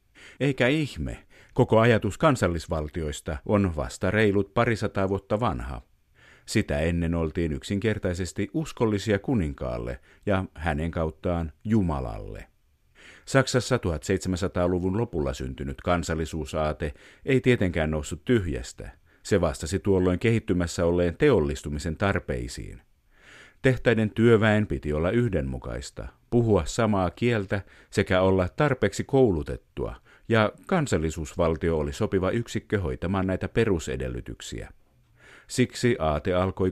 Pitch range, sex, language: 80-105 Hz, male, Finnish